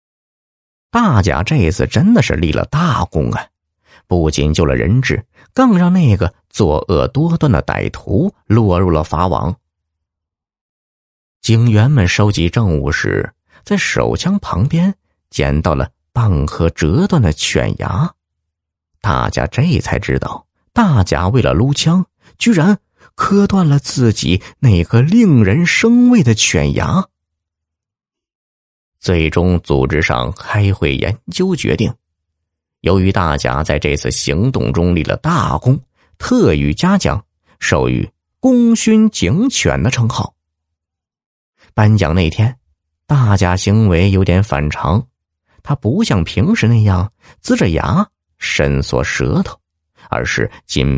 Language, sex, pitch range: Chinese, male, 80-130 Hz